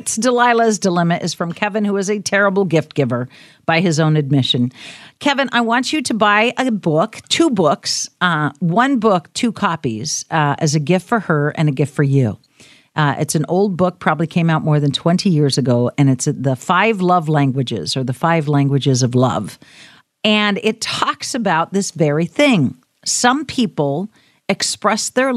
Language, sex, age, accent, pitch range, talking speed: English, female, 50-69, American, 145-195 Hz, 185 wpm